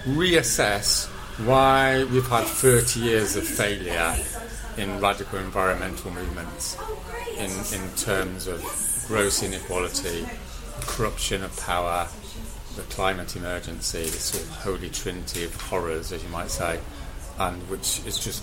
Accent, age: British, 40-59